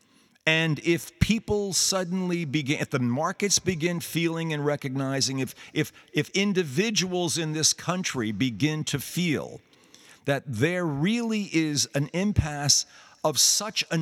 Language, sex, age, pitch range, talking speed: English, male, 50-69, 130-175 Hz, 135 wpm